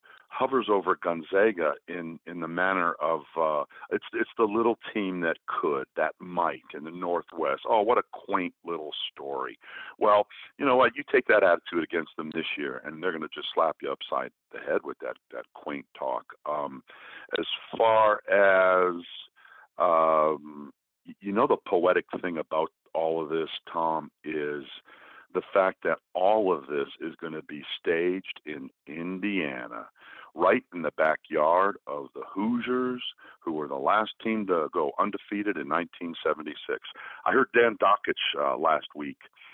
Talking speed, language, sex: 165 wpm, English, male